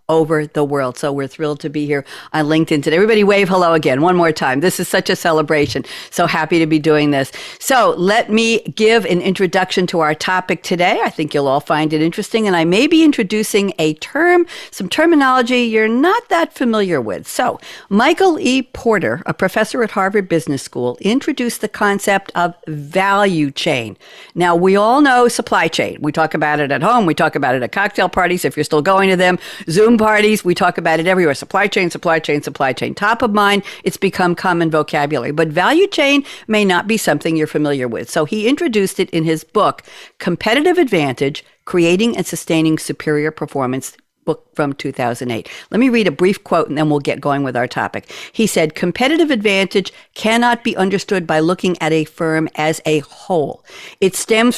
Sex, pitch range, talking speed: female, 155-215 Hz, 200 wpm